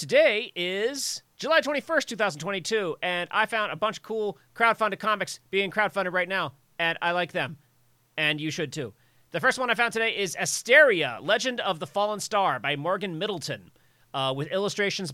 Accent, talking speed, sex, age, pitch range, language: American, 180 wpm, male, 40-59, 155-220 Hz, English